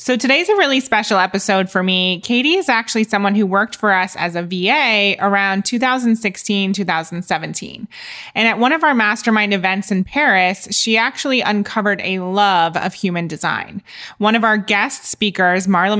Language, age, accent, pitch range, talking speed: English, 20-39, American, 180-220 Hz, 170 wpm